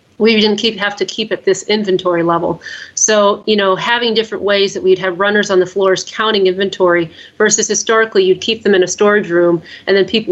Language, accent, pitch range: English, American, 180-215 Hz